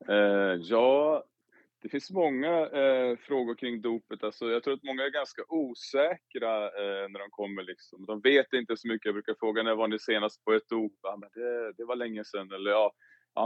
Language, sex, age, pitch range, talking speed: Swedish, male, 20-39, 105-125 Hz, 210 wpm